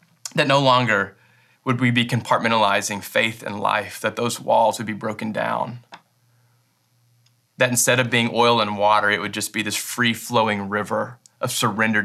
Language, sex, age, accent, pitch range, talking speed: English, male, 20-39, American, 105-120 Hz, 170 wpm